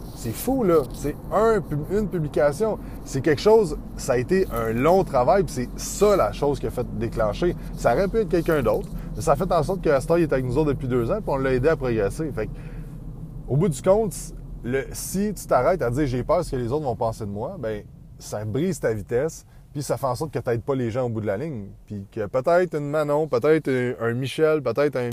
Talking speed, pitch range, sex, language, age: 255 wpm, 120-170 Hz, male, French, 20-39